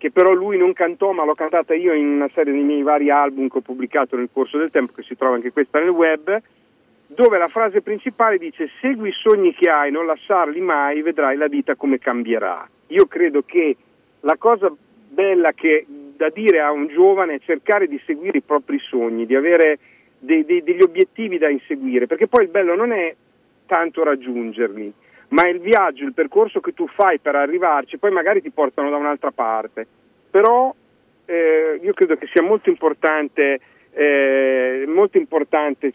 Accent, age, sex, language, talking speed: native, 40-59, male, Italian, 185 wpm